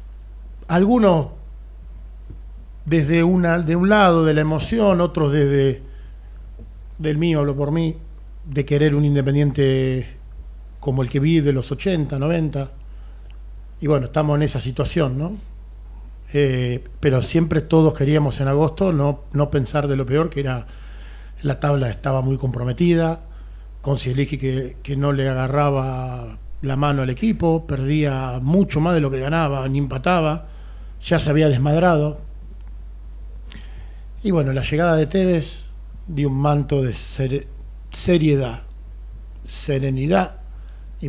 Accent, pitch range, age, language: Argentinian, 125-155 Hz, 40-59, Spanish